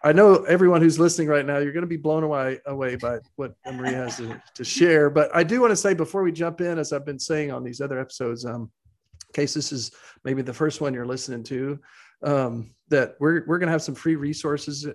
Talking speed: 245 wpm